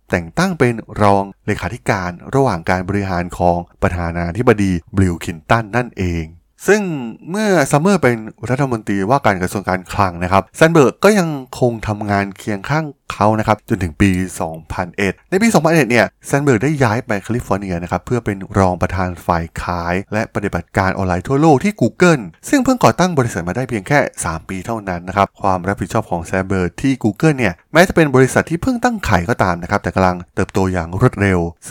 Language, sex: Thai, male